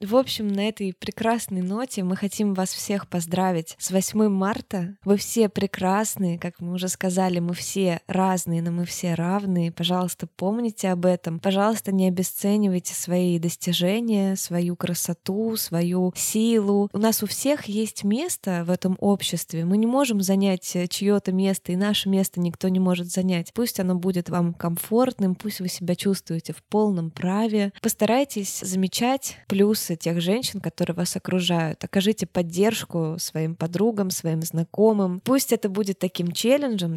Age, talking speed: 20-39, 155 wpm